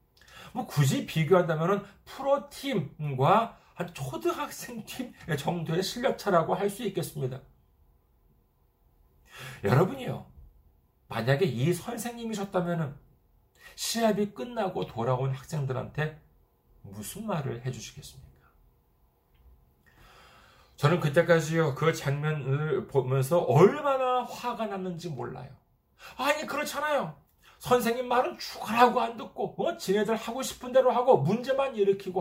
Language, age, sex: Korean, 40-59, male